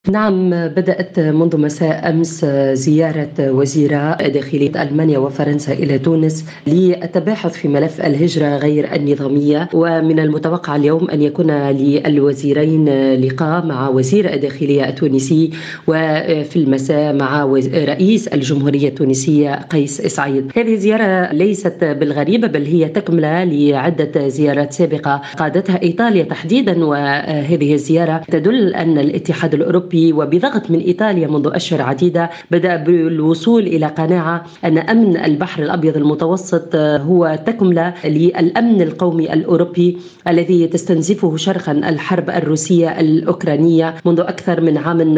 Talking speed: 115 wpm